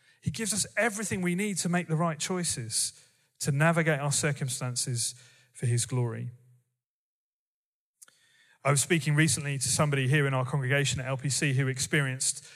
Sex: male